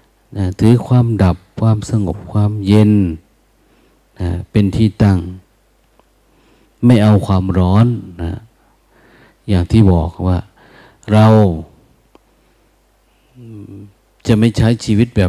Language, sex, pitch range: Thai, male, 95-110 Hz